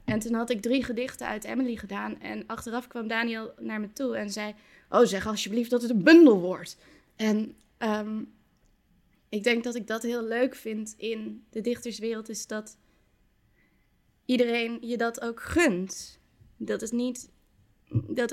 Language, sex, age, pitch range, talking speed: Dutch, female, 20-39, 200-240 Hz, 165 wpm